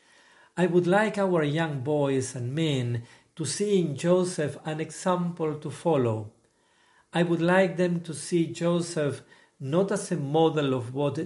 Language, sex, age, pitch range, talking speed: English, male, 50-69, 130-165 Hz, 155 wpm